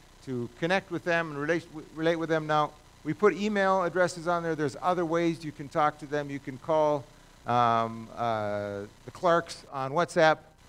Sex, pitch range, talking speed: male, 130-175 Hz, 180 wpm